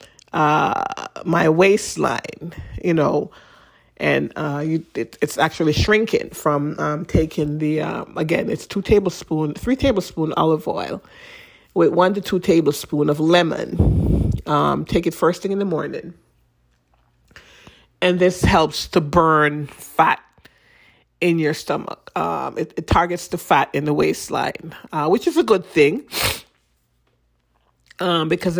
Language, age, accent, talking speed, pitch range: English, 40-59, American, 140 wpm, 155-190 Hz